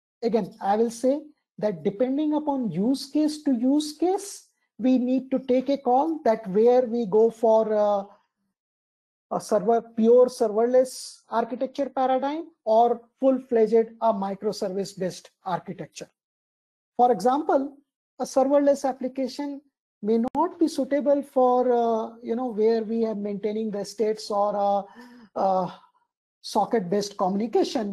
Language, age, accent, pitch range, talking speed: English, 50-69, Indian, 200-255 Hz, 125 wpm